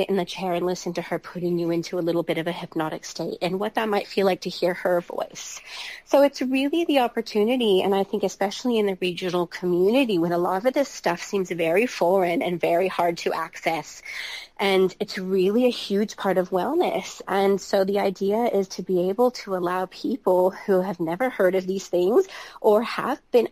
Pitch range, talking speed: 180-235 Hz, 210 wpm